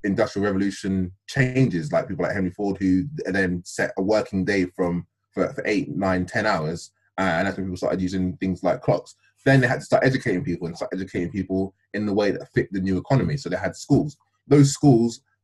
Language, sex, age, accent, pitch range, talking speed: English, male, 20-39, British, 90-105 Hz, 210 wpm